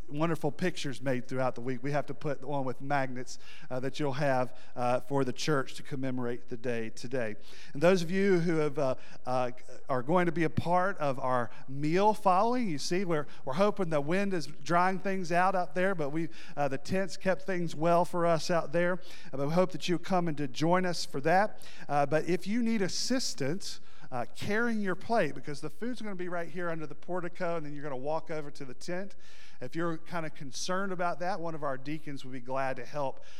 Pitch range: 135-180 Hz